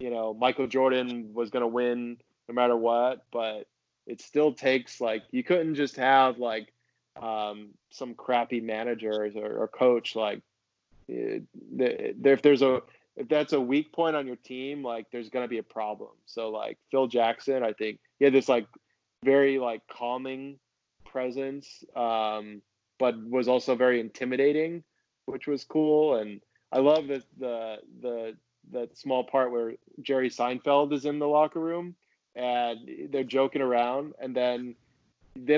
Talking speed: 160 wpm